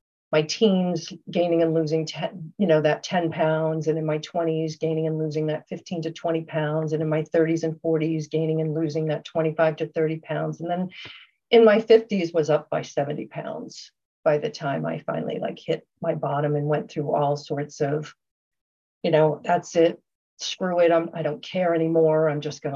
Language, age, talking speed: English, 50-69, 200 wpm